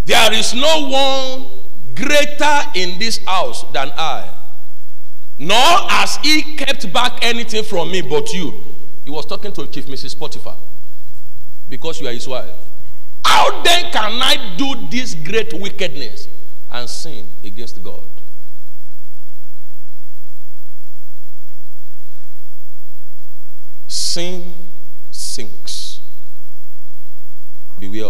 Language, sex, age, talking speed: English, male, 50-69, 100 wpm